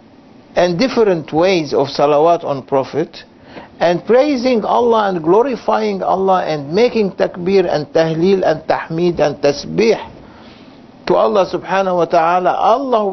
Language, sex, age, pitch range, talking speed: English, male, 60-79, 145-205 Hz, 130 wpm